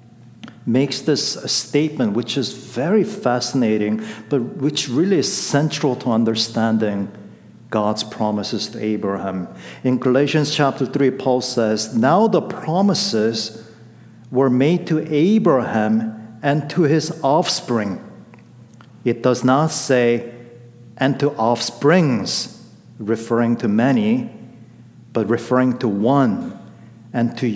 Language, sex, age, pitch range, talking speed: English, male, 50-69, 115-140 Hz, 110 wpm